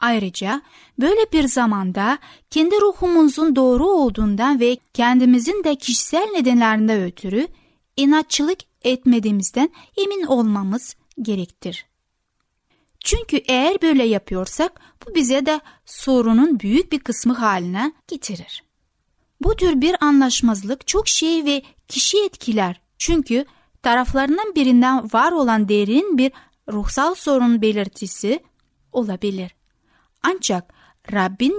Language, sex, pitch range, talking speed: Turkish, female, 215-305 Hz, 105 wpm